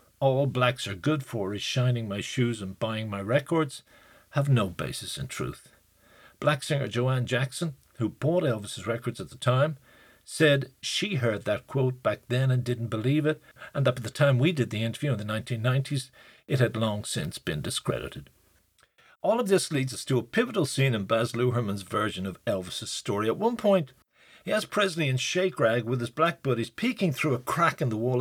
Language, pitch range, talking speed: English, 120-155 Hz, 200 wpm